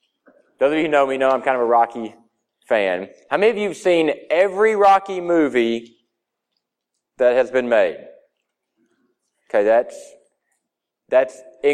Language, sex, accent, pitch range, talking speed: English, male, American, 140-180 Hz, 150 wpm